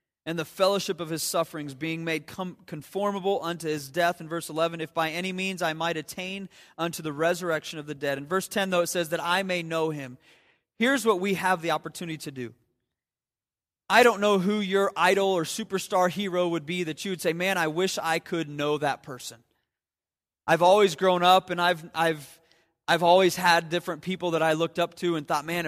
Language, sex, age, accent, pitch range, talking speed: English, male, 30-49, American, 150-190 Hz, 210 wpm